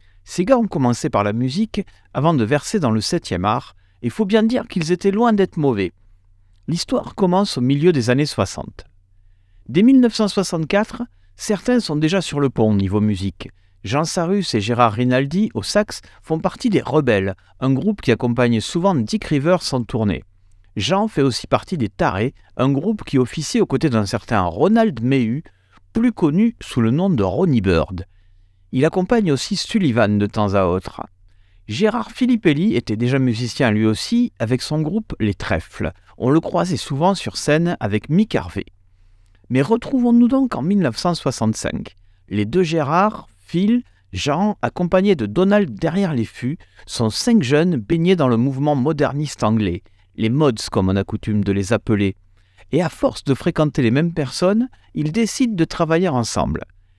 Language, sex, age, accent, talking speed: French, male, 50-69, French, 170 wpm